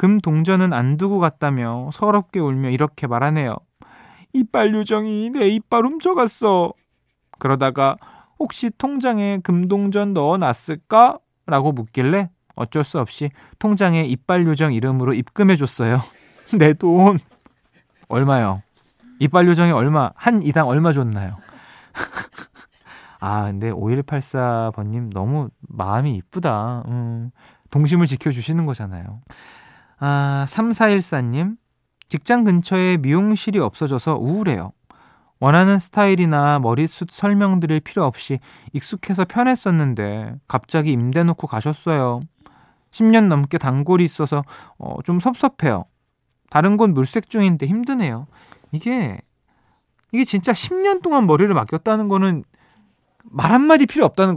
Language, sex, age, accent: Korean, male, 20-39, native